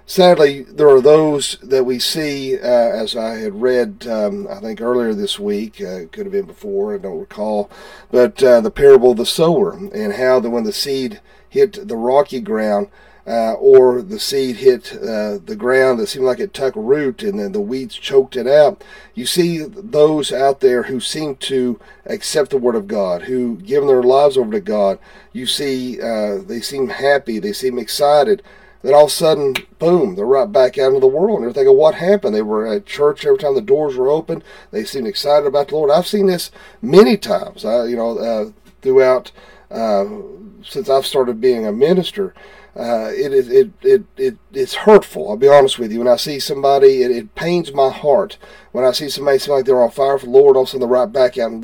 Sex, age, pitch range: male, 50-69, 130-210 Hz